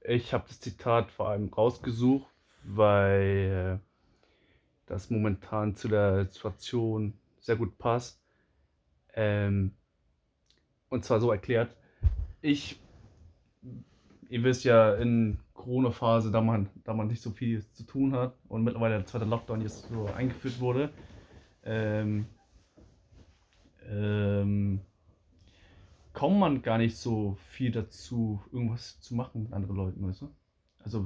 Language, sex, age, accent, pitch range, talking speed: German, male, 20-39, German, 100-120 Hz, 125 wpm